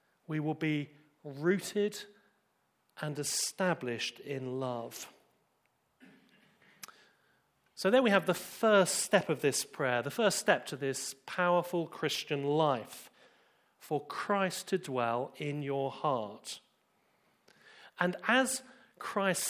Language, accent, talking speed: English, British, 110 wpm